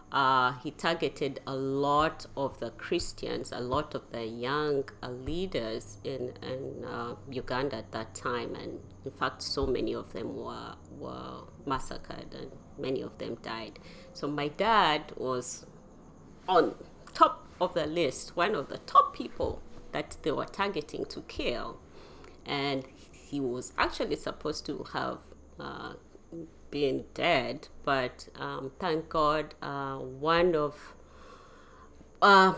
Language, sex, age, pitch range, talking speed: English, female, 30-49, 130-175 Hz, 140 wpm